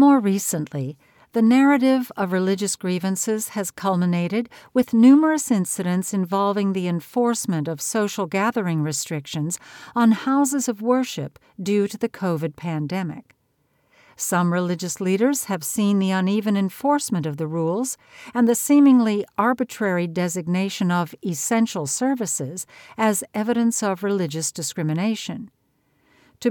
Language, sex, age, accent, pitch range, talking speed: English, female, 60-79, American, 175-230 Hz, 120 wpm